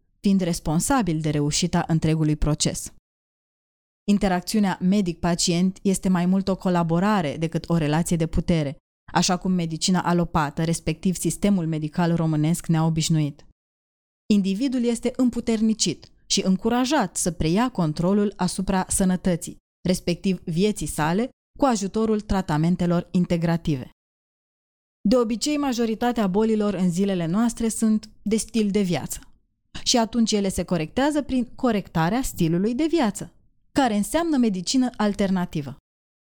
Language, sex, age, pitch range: Romanian, female, 20-39, 170-215 Hz